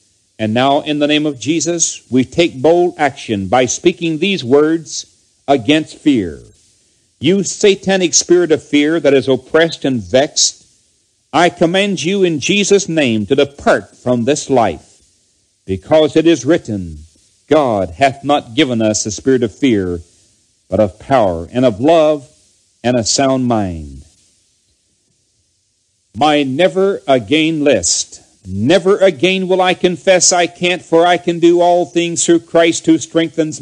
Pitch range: 120-175 Hz